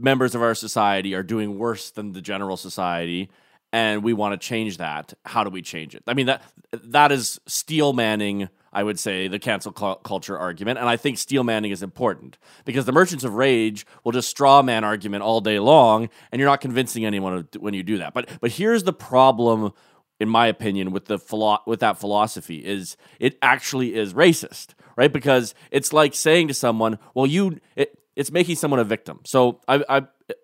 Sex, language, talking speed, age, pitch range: male, English, 200 wpm, 30-49, 105-155 Hz